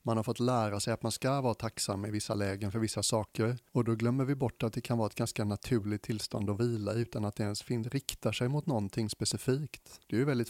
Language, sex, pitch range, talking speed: English, male, 105-125 Hz, 250 wpm